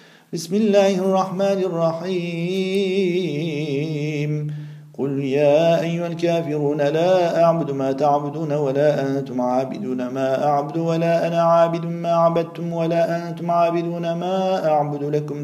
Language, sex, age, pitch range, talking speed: Turkish, male, 40-59, 145-170 Hz, 110 wpm